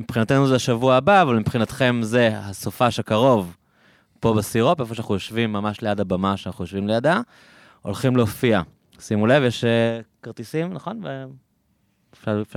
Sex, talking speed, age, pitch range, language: male, 140 wpm, 20-39, 100-115 Hz, Hebrew